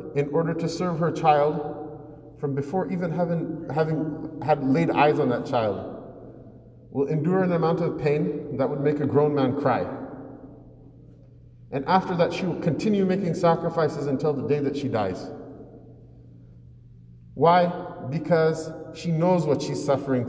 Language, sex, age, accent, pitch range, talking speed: English, male, 40-59, American, 120-185 Hz, 150 wpm